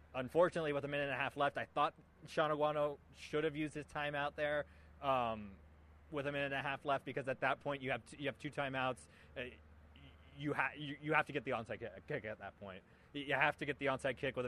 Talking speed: 250 wpm